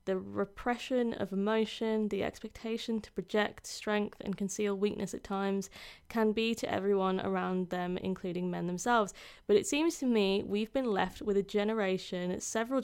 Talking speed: 165 wpm